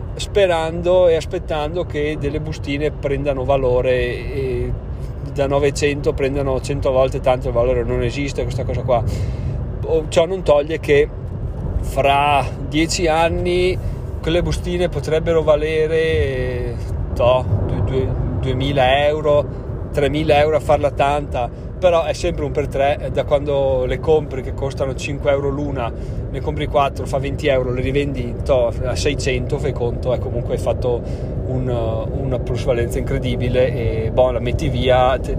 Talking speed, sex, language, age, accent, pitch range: 135 wpm, male, Italian, 30-49, native, 125-145 Hz